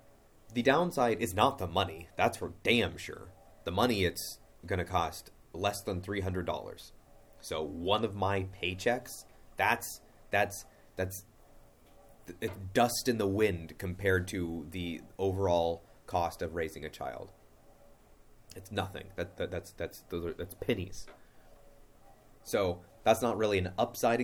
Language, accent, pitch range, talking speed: English, American, 90-110 Hz, 135 wpm